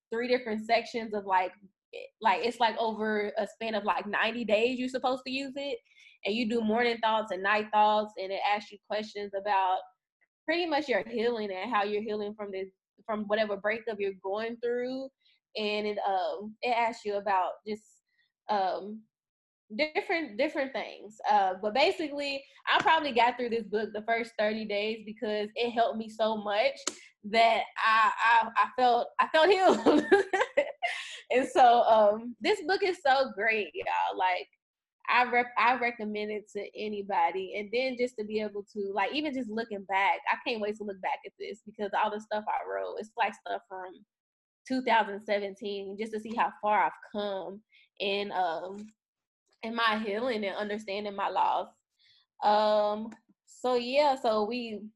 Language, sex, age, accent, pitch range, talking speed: English, female, 10-29, American, 205-250 Hz, 175 wpm